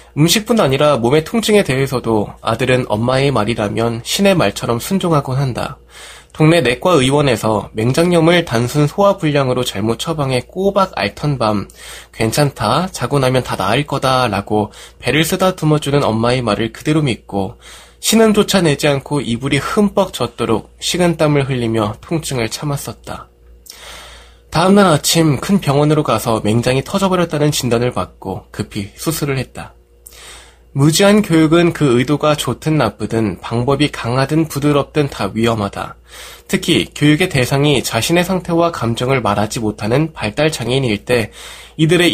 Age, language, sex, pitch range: 20-39, Korean, male, 115-160 Hz